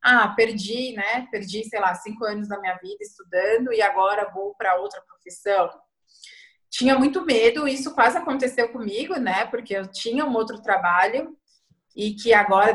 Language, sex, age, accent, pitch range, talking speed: Portuguese, female, 20-39, Brazilian, 190-235 Hz, 165 wpm